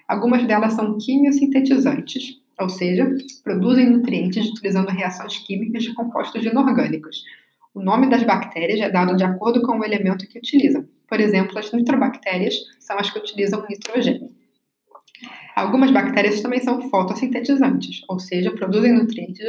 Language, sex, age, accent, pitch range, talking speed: Portuguese, female, 20-39, Brazilian, 205-265 Hz, 140 wpm